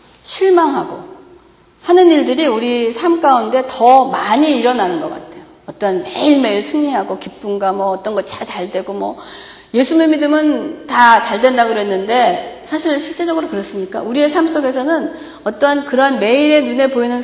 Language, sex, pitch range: Korean, female, 215-325 Hz